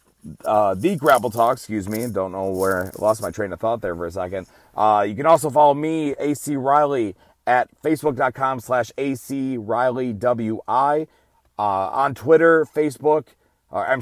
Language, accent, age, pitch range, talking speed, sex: English, American, 30-49, 105-140 Hz, 165 wpm, male